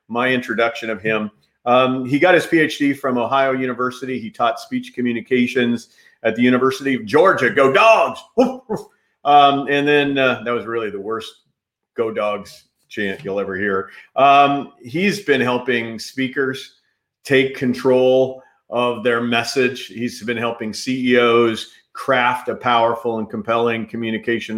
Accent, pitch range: American, 115-135 Hz